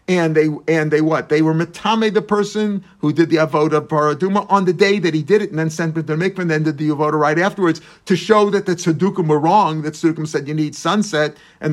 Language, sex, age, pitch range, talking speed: English, male, 50-69, 155-190 Hz, 245 wpm